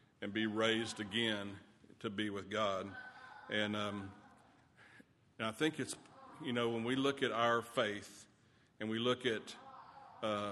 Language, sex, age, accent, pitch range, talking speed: English, male, 50-69, American, 110-130 Hz, 155 wpm